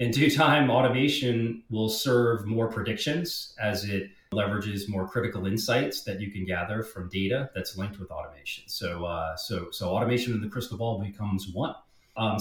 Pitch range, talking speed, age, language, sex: 95-115 Hz, 175 wpm, 30-49, English, male